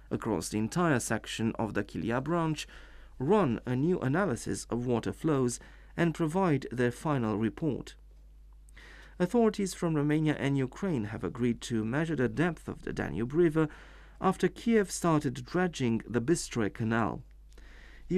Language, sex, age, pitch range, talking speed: English, male, 40-59, 110-165 Hz, 140 wpm